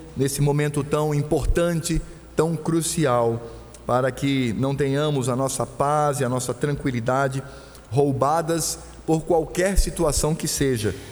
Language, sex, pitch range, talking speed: Portuguese, male, 125-165 Hz, 125 wpm